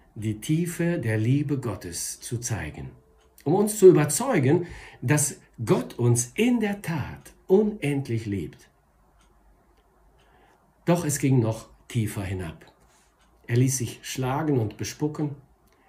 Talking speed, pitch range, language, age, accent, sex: 115 wpm, 120-170 Hz, German, 50-69, German, male